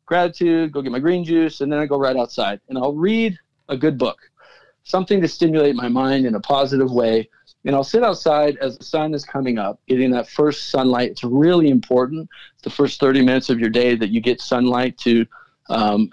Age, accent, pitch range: 40-59, American, 130-165 Hz